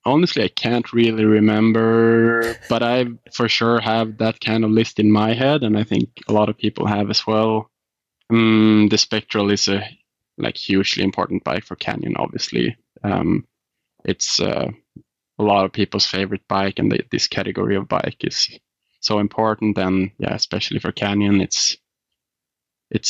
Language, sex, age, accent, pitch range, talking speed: English, male, 20-39, Norwegian, 100-110 Hz, 165 wpm